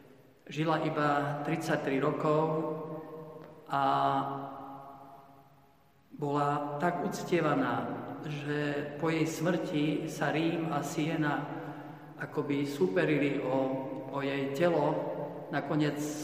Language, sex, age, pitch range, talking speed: Slovak, male, 50-69, 135-150 Hz, 90 wpm